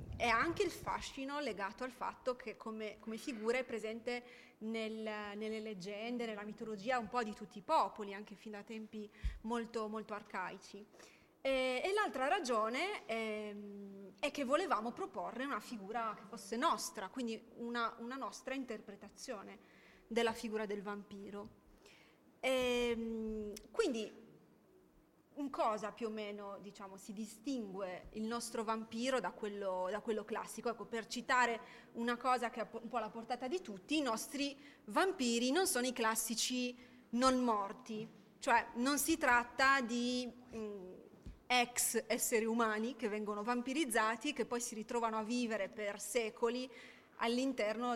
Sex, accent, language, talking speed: female, native, Italian, 145 wpm